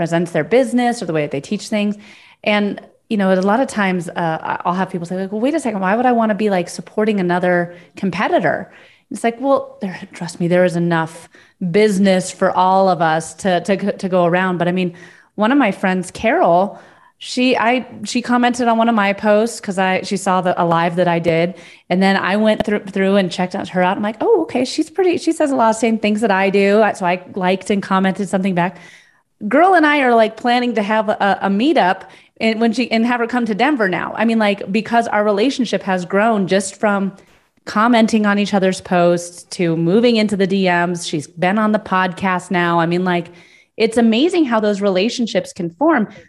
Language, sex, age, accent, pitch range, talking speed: English, female, 30-49, American, 180-225 Hz, 225 wpm